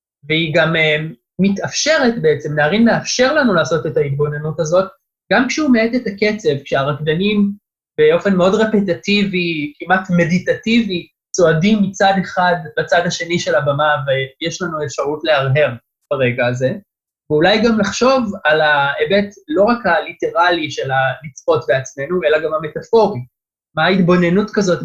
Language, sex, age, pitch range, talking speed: Hebrew, male, 20-39, 145-200 Hz, 130 wpm